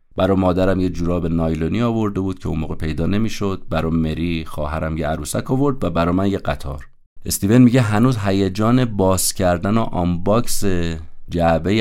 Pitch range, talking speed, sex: 80-105 Hz, 170 wpm, male